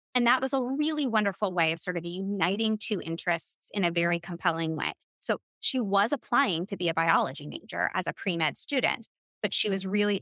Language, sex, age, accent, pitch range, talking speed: English, female, 20-39, American, 170-220 Hz, 205 wpm